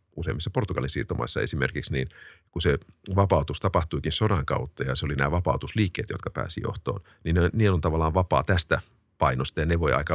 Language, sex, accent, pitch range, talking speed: Finnish, male, native, 80-100 Hz, 190 wpm